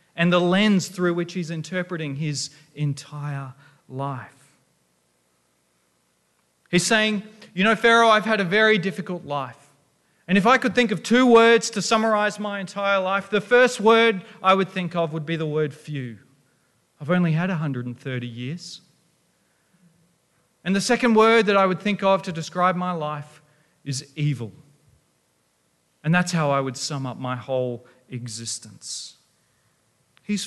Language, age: English, 40-59